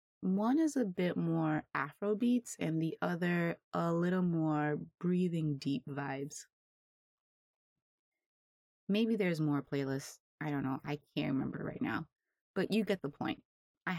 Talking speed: 140 wpm